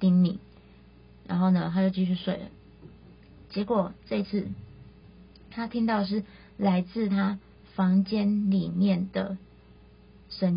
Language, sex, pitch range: Chinese, female, 190-225 Hz